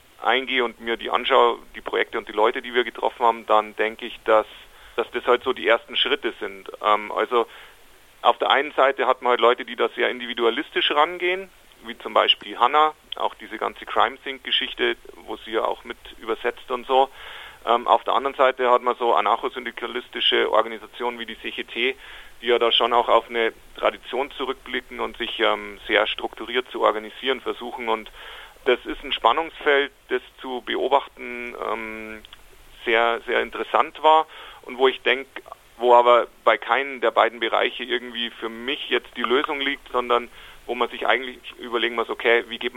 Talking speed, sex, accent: 180 wpm, male, German